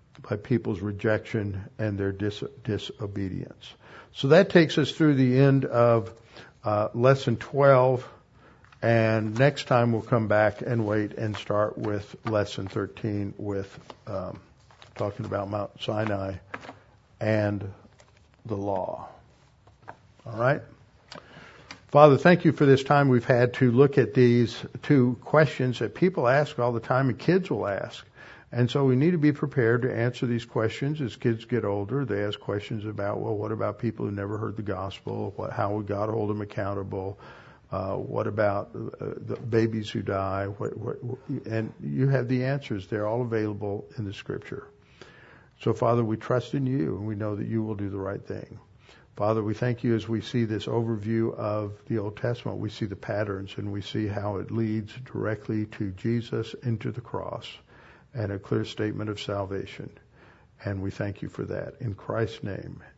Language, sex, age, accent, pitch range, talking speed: English, male, 60-79, American, 105-125 Hz, 170 wpm